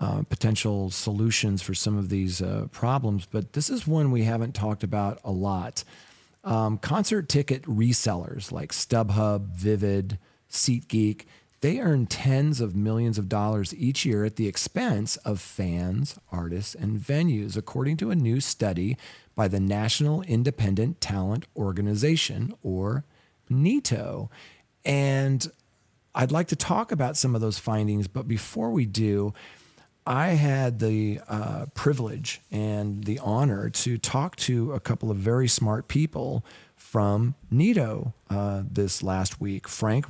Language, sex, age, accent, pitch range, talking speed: English, male, 40-59, American, 100-135 Hz, 140 wpm